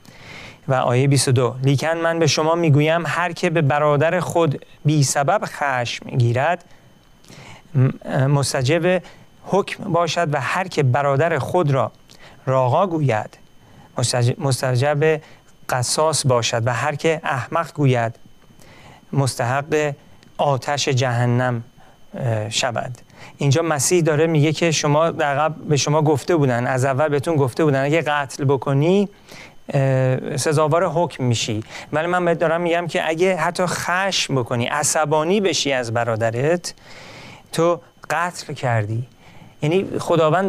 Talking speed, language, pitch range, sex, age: 125 wpm, Persian, 130-160 Hz, male, 40-59